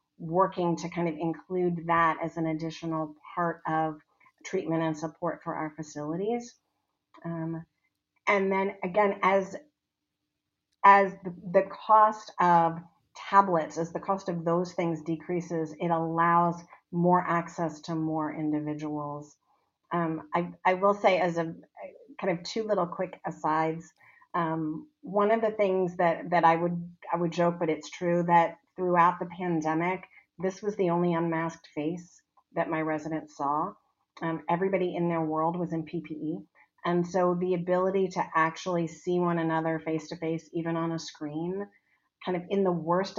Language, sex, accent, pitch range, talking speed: English, female, American, 165-195 Hz, 155 wpm